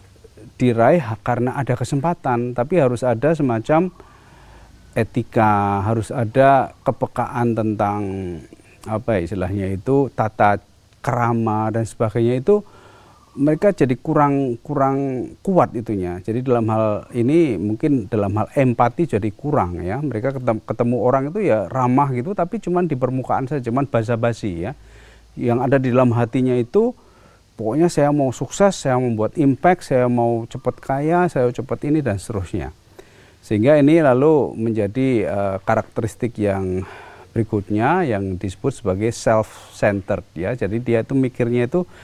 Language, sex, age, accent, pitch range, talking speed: Indonesian, male, 40-59, native, 105-135 Hz, 135 wpm